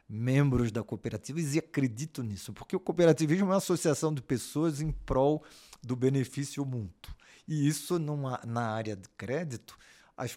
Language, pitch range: Portuguese, 110-145 Hz